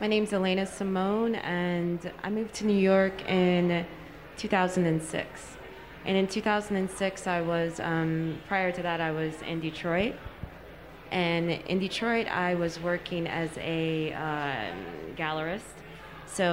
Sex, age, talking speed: female, 30-49, 130 wpm